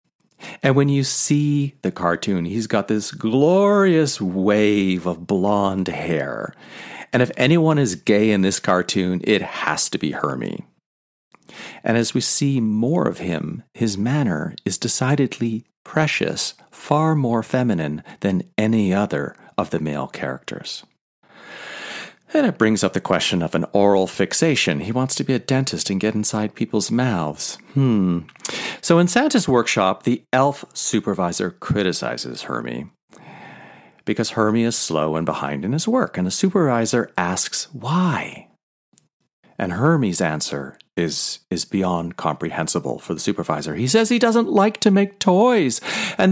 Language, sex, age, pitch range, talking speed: English, male, 40-59, 100-150 Hz, 145 wpm